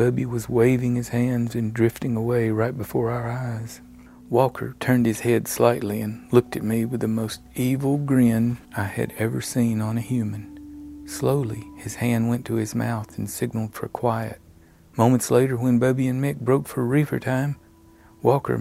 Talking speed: 175 wpm